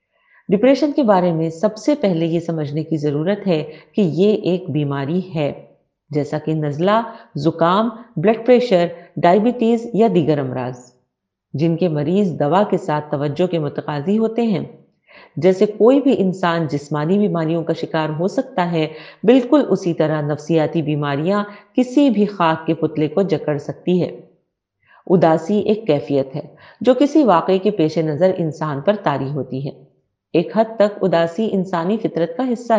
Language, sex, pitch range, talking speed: Urdu, female, 155-210 Hz, 155 wpm